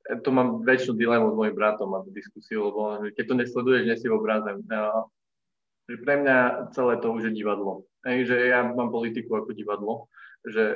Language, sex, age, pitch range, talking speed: Slovak, male, 20-39, 115-165 Hz, 175 wpm